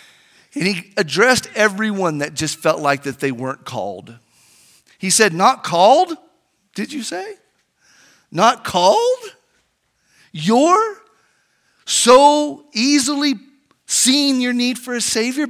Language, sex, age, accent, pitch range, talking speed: English, male, 40-59, American, 140-225 Hz, 115 wpm